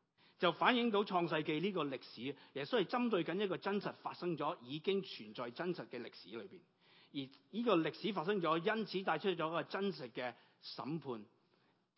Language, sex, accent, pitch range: Chinese, male, native, 135-195 Hz